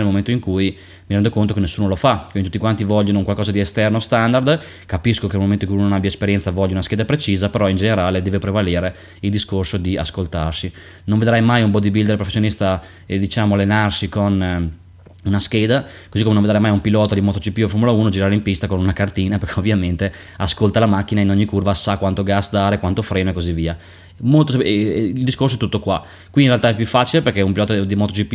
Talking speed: 230 wpm